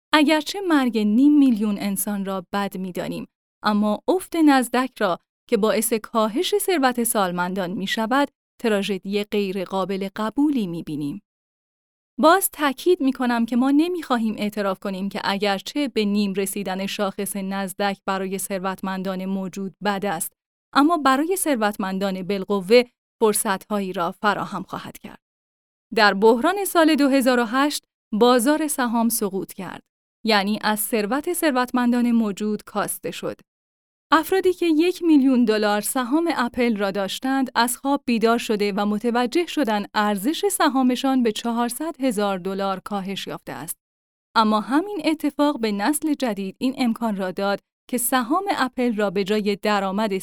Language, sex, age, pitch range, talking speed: Persian, female, 10-29, 200-270 Hz, 135 wpm